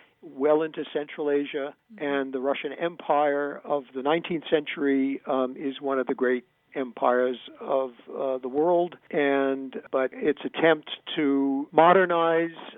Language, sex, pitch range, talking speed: English, male, 125-145 Hz, 135 wpm